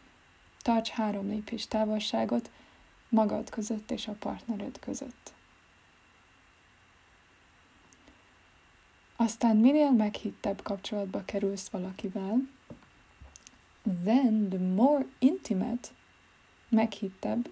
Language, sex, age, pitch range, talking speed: Hungarian, female, 20-39, 190-225 Hz, 70 wpm